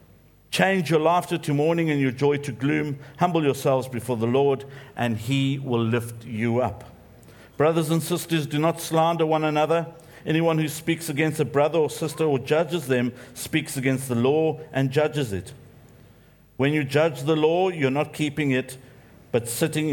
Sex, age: male, 50-69